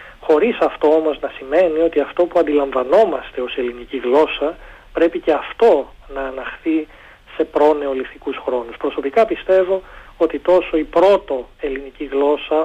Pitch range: 135-165 Hz